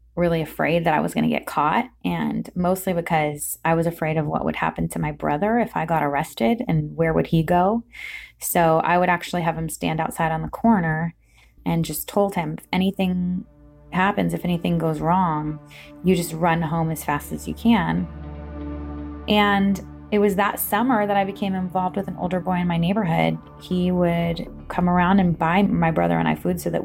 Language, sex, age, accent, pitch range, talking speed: English, female, 20-39, American, 155-190 Hz, 205 wpm